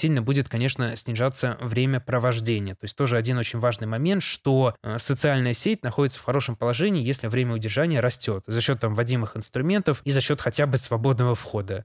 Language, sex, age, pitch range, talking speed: Russian, male, 20-39, 120-145 Hz, 185 wpm